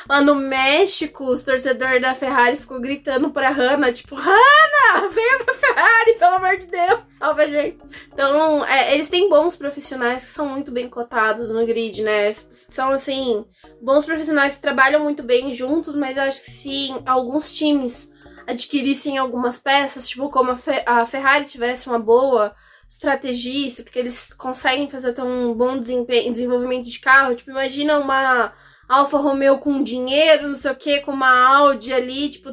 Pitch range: 255-300 Hz